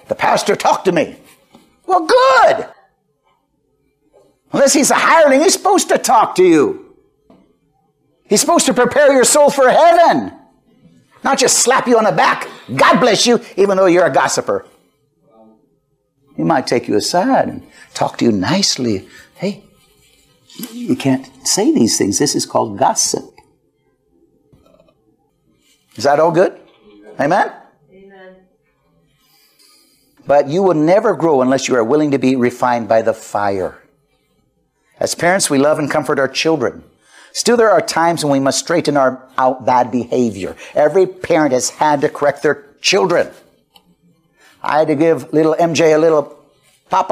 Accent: American